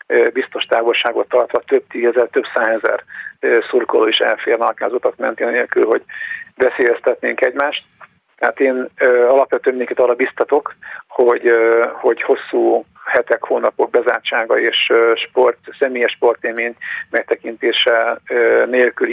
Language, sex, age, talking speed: Hungarian, male, 50-69, 110 wpm